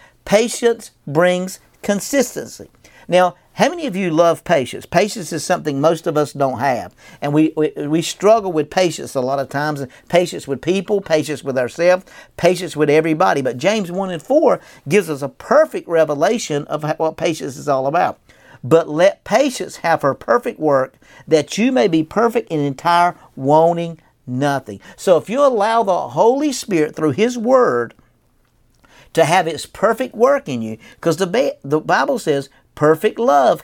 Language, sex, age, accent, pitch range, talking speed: English, male, 50-69, American, 150-210 Hz, 170 wpm